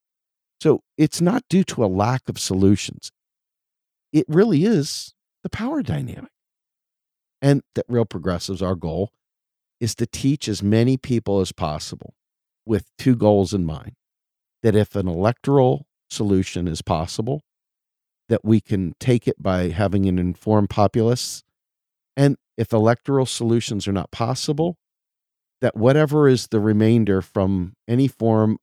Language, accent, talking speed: English, American, 140 wpm